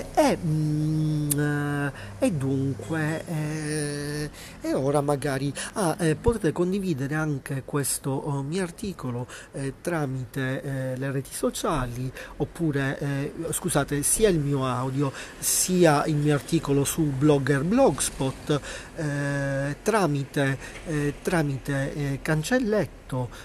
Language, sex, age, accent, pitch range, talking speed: Italian, male, 40-59, native, 135-160 Hz, 105 wpm